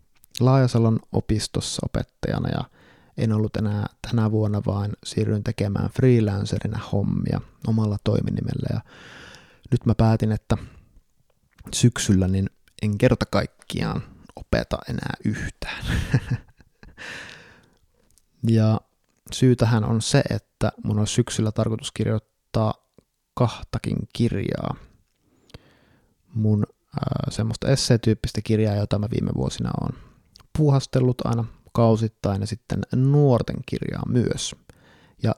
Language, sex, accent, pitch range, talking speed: Finnish, male, native, 105-125 Hz, 100 wpm